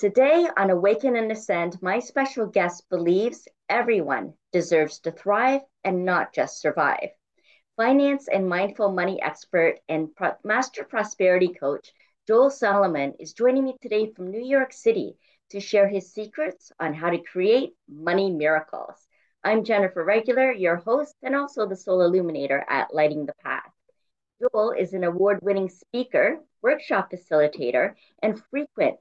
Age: 50-69